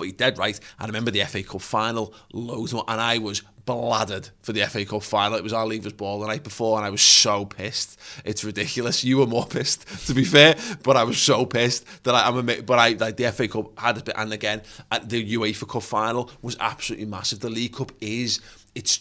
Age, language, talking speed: 20-39, English, 235 wpm